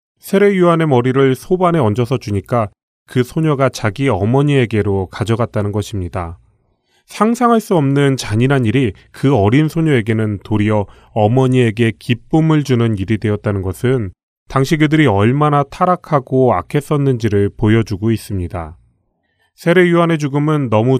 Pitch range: 105-140 Hz